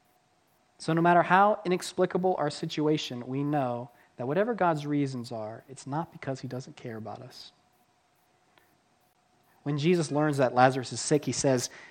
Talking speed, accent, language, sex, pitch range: 155 wpm, American, English, male, 120-150 Hz